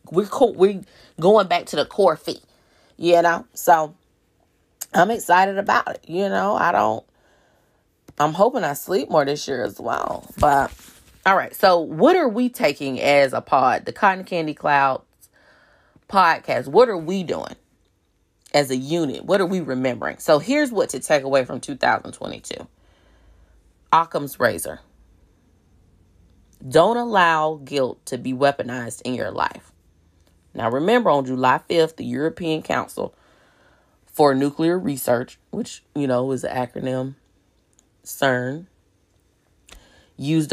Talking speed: 140 wpm